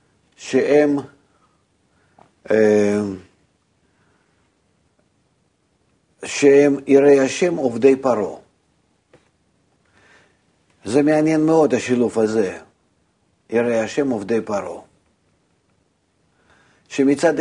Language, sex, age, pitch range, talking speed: Hebrew, male, 50-69, 110-145 Hz, 55 wpm